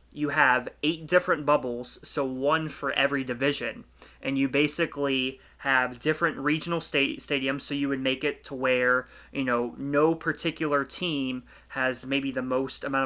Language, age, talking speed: English, 20-39, 160 wpm